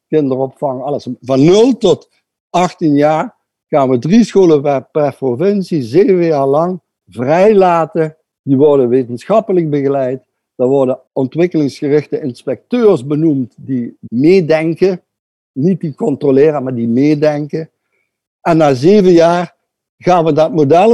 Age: 60-79